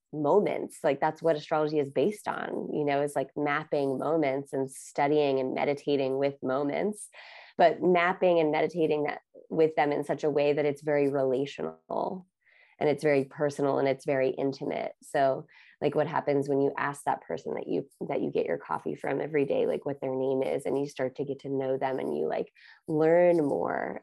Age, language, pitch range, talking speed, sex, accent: 20-39, English, 140-160 Hz, 200 wpm, female, American